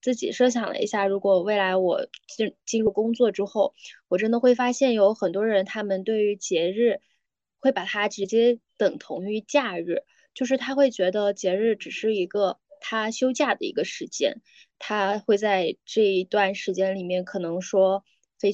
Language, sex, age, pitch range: Chinese, female, 10-29, 195-240 Hz